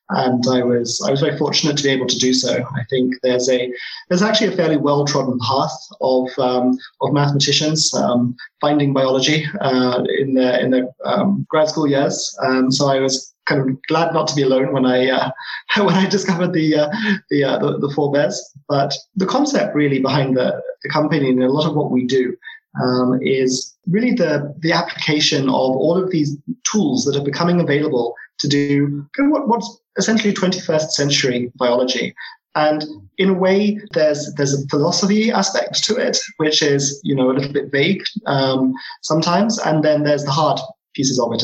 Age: 20-39